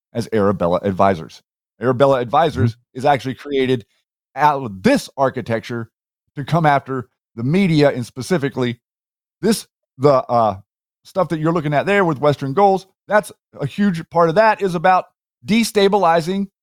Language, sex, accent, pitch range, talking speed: English, male, American, 140-200 Hz, 145 wpm